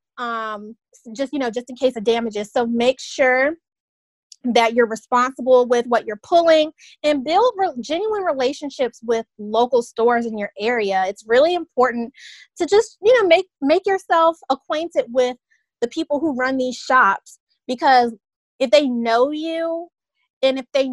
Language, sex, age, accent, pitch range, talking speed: English, female, 20-39, American, 230-285 Hz, 160 wpm